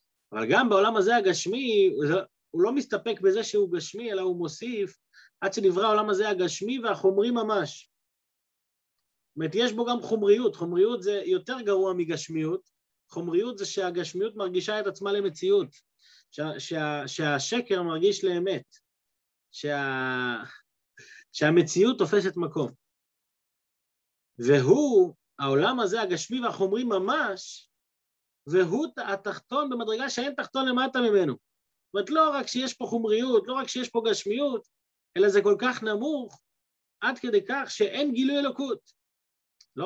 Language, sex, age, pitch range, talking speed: Hebrew, male, 30-49, 165-255 Hz, 125 wpm